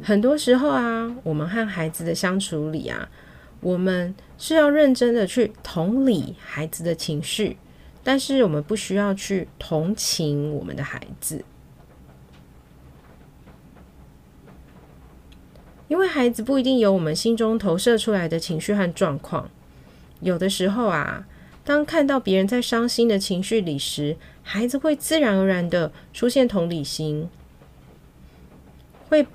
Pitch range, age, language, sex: 145-235 Hz, 30-49, Chinese, female